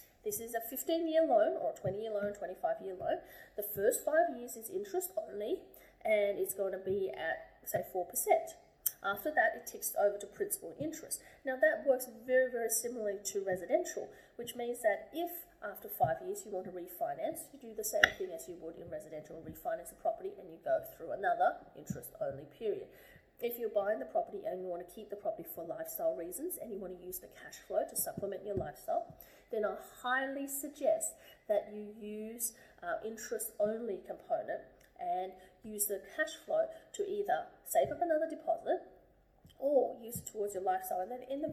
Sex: female